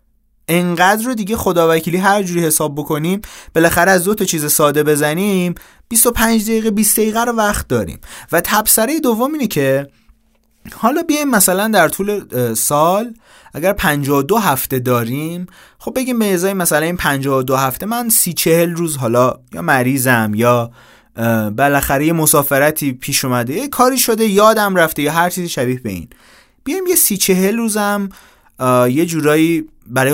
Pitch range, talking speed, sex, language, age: 135-200 Hz, 135 wpm, male, Persian, 30-49